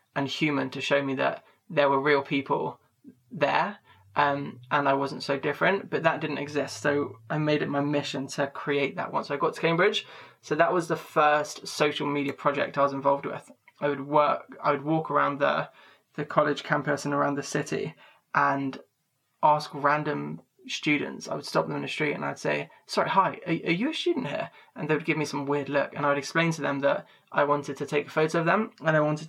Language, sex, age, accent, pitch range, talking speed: English, male, 20-39, British, 145-160 Hz, 225 wpm